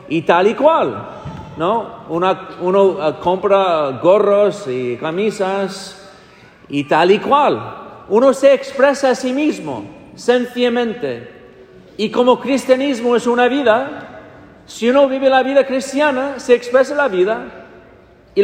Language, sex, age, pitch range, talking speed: English, male, 50-69, 205-270 Hz, 125 wpm